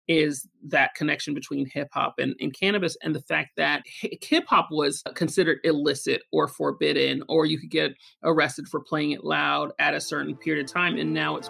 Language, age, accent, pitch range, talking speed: English, 30-49, American, 150-175 Hz, 190 wpm